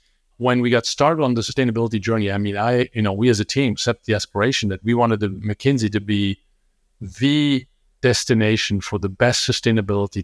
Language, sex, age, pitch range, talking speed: English, male, 50-69, 105-120 Hz, 195 wpm